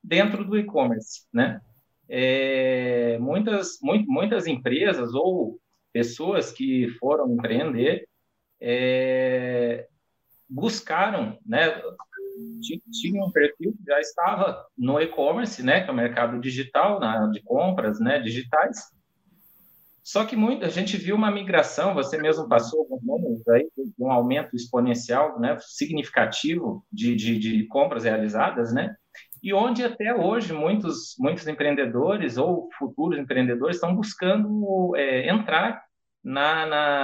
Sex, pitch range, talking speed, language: male, 130-205 Hz, 120 wpm, Portuguese